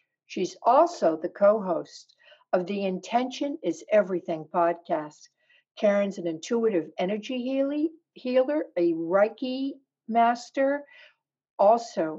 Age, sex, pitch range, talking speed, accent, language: 60-79, female, 175-245 Hz, 95 wpm, American, English